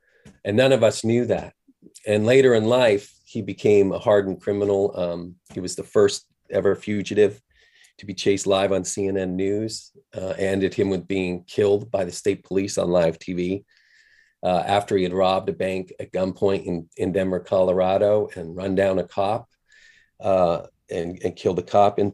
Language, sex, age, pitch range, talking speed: English, male, 40-59, 95-110 Hz, 180 wpm